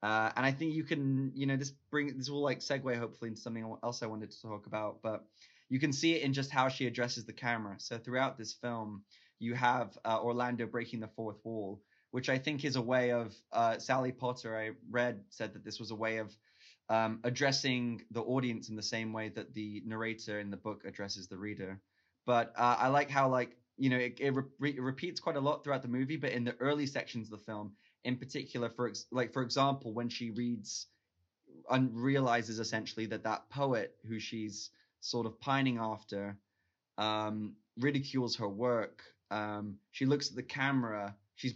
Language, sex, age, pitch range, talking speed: English, male, 20-39, 110-130 Hz, 205 wpm